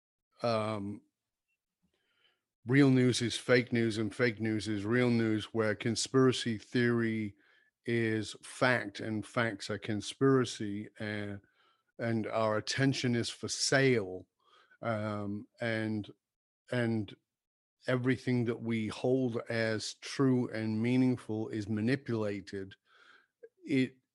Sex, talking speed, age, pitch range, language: male, 105 wpm, 40-59, 110-125 Hz, English